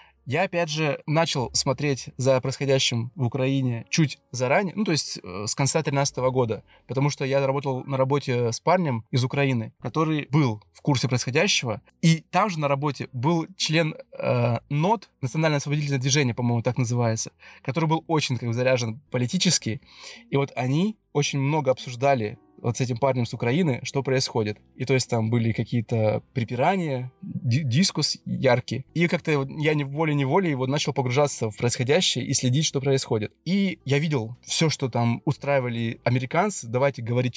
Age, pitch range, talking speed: 20-39, 120-150 Hz, 165 wpm